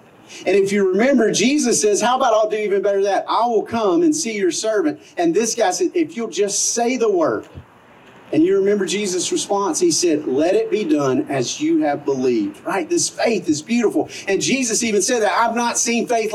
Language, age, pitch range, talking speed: English, 40-59, 215-345 Hz, 220 wpm